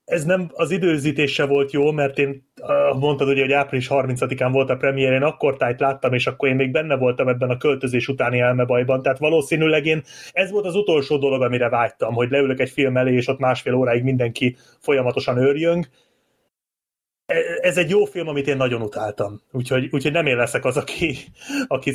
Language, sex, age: Hungarian, male, 30-49